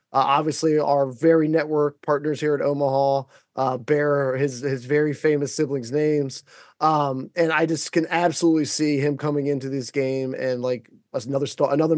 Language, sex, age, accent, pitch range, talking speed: English, male, 20-39, American, 145-190 Hz, 175 wpm